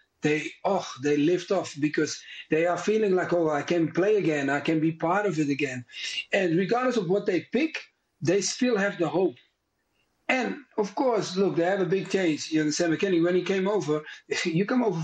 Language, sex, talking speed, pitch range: English, male, 210 wpm, 155-205 Hz